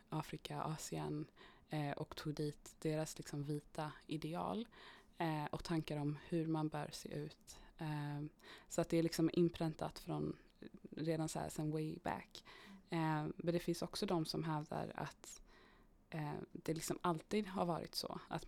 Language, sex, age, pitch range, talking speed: Swedish, female, 20-39, 155-175 Hz, 160 wpm